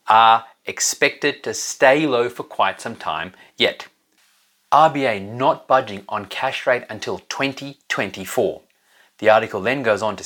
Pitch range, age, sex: 105-175 Hz, 30-49, male